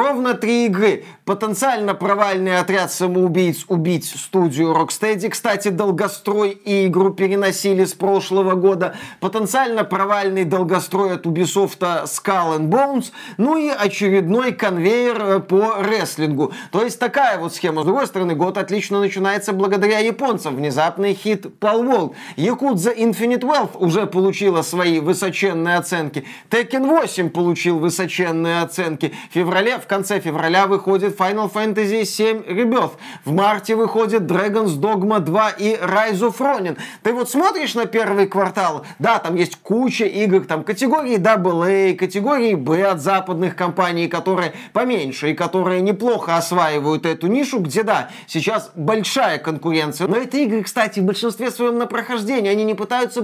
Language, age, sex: Russian, 30-49, male